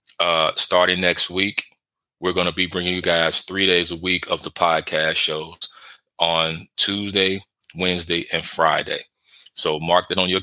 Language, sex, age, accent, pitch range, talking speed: English, male, 20-39, American, 80-90 Hz, 165 wpm